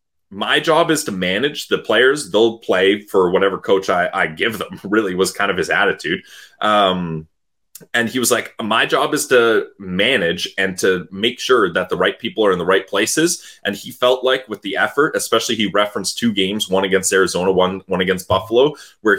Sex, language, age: male, English, 20-39